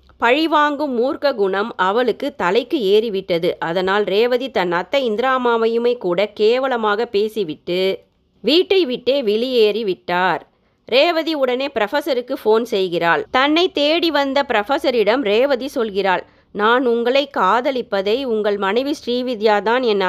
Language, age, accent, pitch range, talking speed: Tamil, 30-49, native, 200-270 Hz, 105 wpm